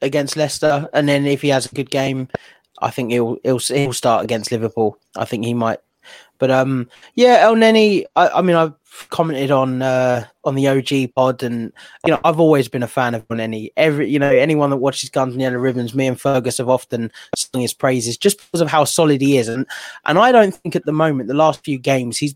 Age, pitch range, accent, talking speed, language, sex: 20-39, 130-160 Hz, British, 230 wpm, English, male